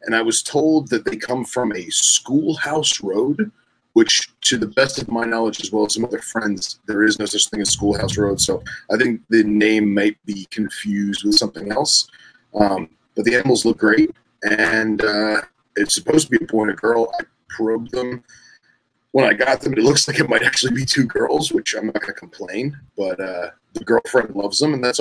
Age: 30-49